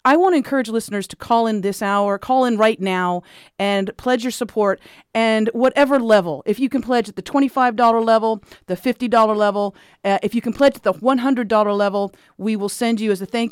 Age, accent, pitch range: 40-59, American, 185-235 Hz